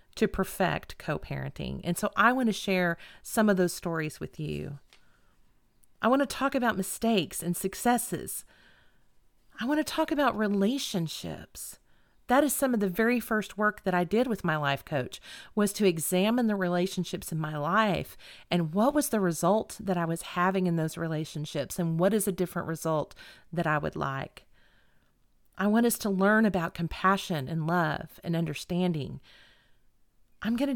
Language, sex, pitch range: English, female, 165-215 Hz